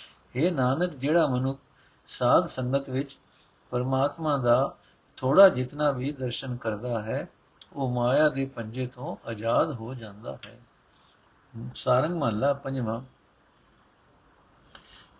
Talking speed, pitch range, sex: 105 wpm, 125-165 Hz, male